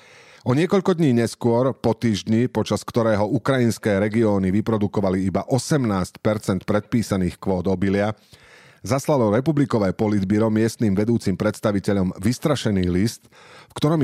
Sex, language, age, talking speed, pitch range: male, Slovak, 40-59, 110 wpm, 95-120 Hz